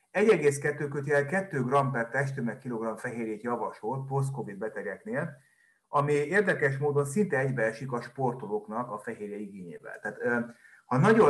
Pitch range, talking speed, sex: 120-145 Hz, 125 wpm, male